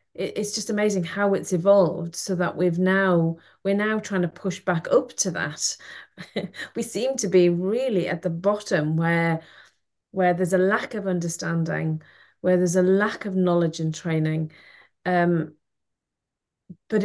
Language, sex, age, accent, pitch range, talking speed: English, female, 30-49, British, 165-195 Hz, 155 wpm